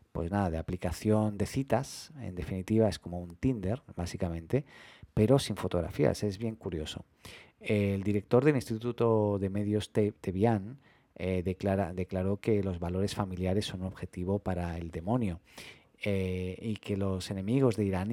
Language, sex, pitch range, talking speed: Spanish, male, 95-110 Hz, 150 wpm